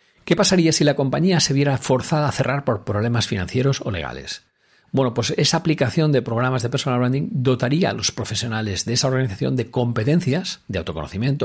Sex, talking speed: male, 185 wpm